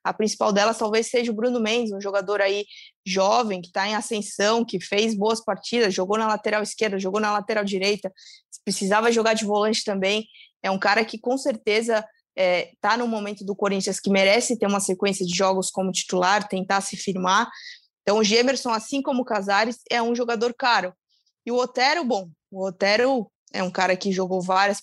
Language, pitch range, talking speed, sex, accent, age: Portuguese, 190-235 Hz, 195 wpm, female, Brazilian, 20-39